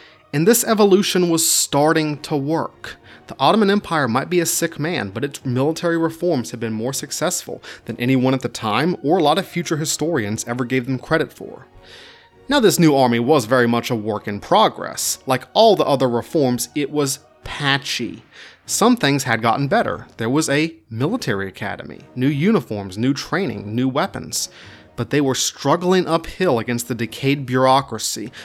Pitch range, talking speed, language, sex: 120-155 Hz, 175 wpm, English, male